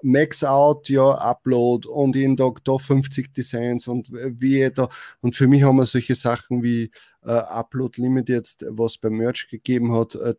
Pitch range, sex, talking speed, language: 115-140 Hz, male, 175 wpm, German